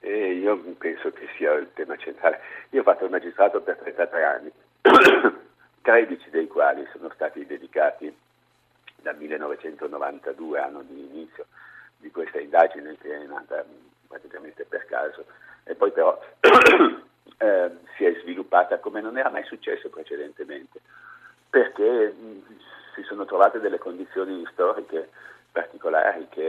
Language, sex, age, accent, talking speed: Italian, male, 60-79, native, 130 wpm